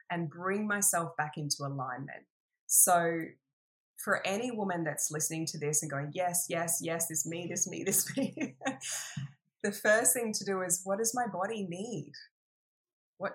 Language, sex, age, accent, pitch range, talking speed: English, female, 20-39, Australian, 160-200 Hz, 165 wpm